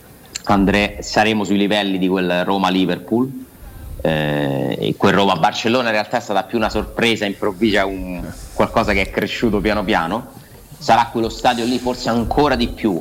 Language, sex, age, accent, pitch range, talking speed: Italian, male, 30-49, native, 90-115 Hz, 160 wpm